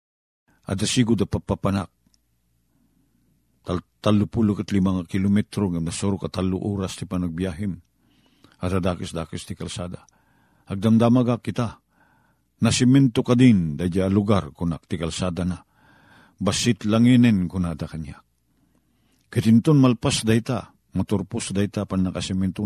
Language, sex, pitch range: Filipino, male, 90-125 Hz